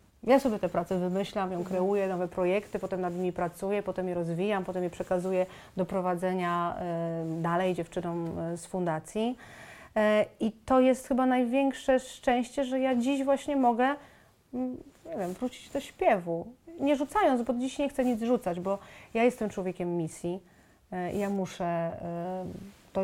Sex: female